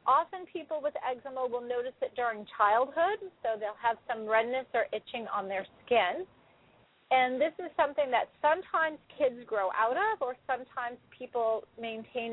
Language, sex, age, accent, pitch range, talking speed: English, female, 40-59, American, 220-265 Hz, 160 wpm